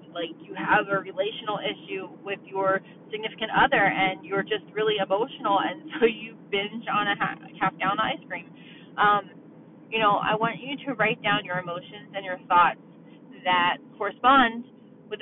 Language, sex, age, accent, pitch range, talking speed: English, female, 30-49, American, 190-250 Hz, 165 wpm